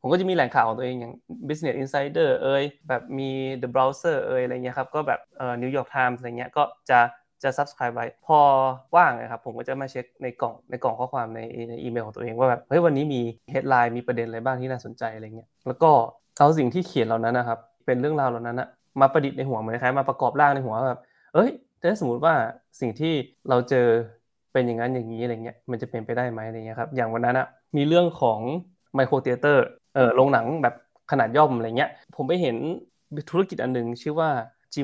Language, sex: Thai, male